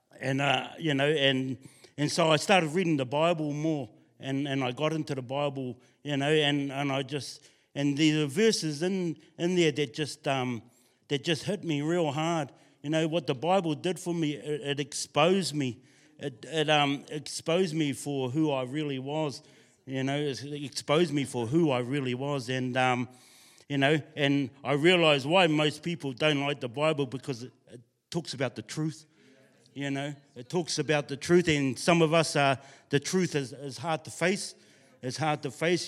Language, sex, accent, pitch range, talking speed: English, male, Australian, 135-160 Hz, 195 wpm